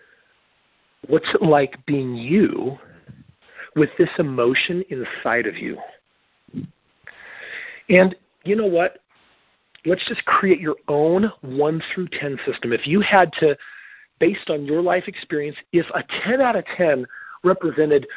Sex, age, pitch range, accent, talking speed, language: male, 40-59, 145-190 Hz, American, 130 wpm, English